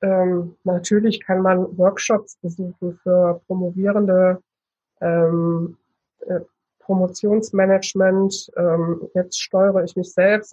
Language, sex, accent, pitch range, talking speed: German, female, German, 185-215 Hz, 95 wpm